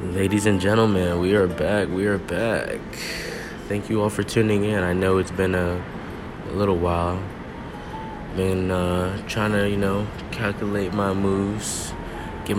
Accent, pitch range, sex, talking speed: American, 90-100 Hz, male, 155 wpm